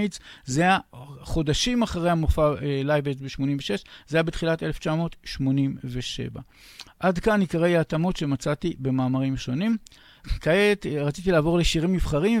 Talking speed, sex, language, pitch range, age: 110 wpm, male, Hebrew, 145-185 Hz, 50-69